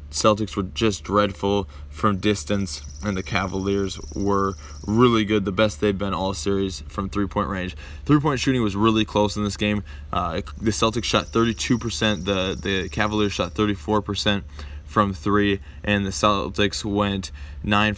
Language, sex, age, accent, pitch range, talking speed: English, male, 20-39, American, 95-110 Hz, 160 wpm